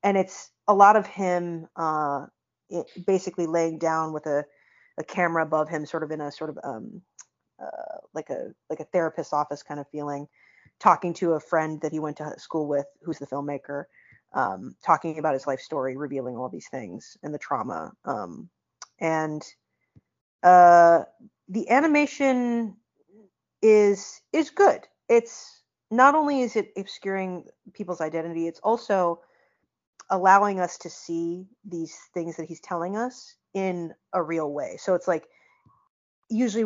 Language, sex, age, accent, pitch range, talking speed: English, female, 30-49, American, 155-200 Hz, 155 wpm